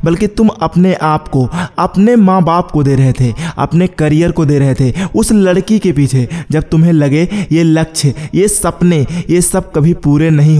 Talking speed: 195 wpm